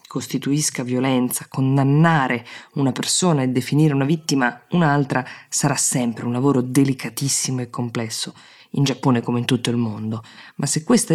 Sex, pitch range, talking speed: female, 125-150 Hz, 145 wpm